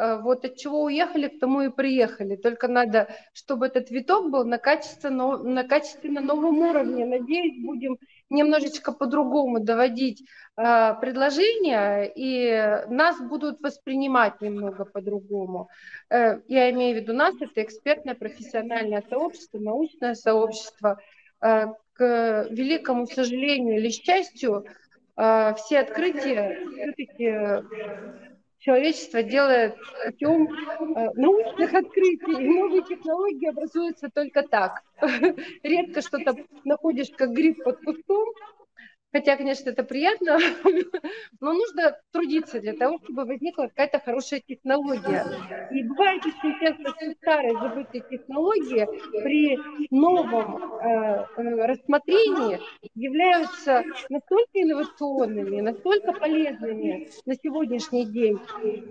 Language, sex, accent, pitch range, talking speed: Russian, female, native, 235-315 Hz, 100 wpm